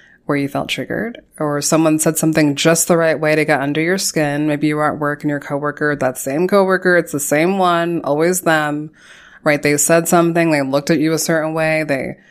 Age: 20-39